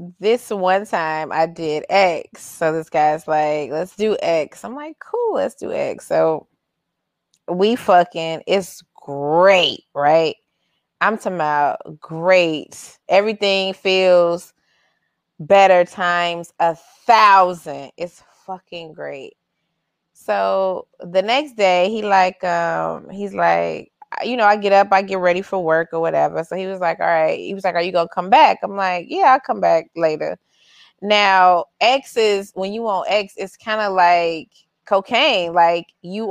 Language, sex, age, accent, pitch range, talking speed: English, female, 20-39, American, 165-210 Hz, 155 wpm